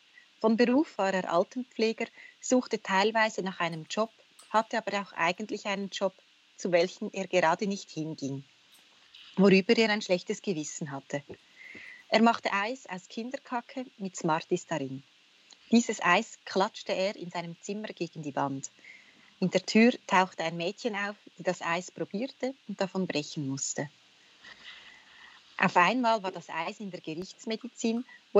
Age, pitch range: 30-49, 175-225 Hz